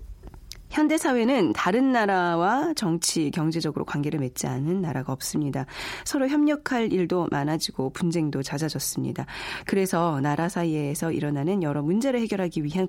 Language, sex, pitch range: Korean, female, 155-225 Hz